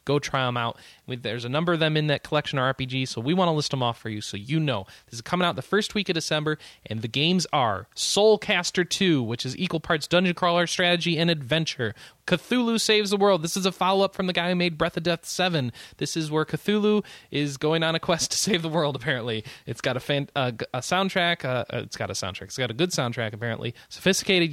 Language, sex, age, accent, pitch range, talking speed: English, male, 20-39, American, 130-185 Hz, 240 wpm